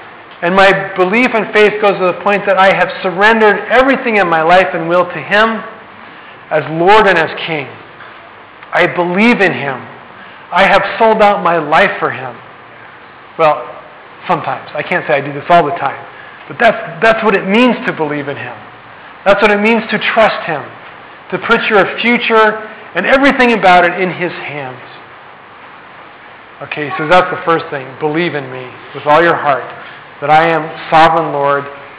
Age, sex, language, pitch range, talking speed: 40-59, male, English, 155-200 Hz, 180 wpm